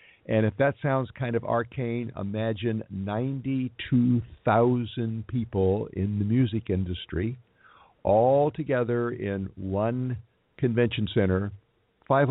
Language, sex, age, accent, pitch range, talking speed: English, male, 50-69, American, 100-130 Hz, 100 wpm